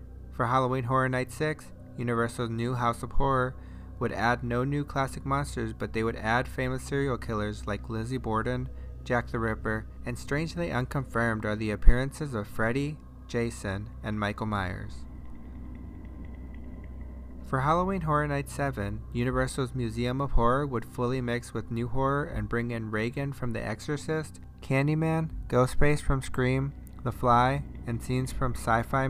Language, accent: English, American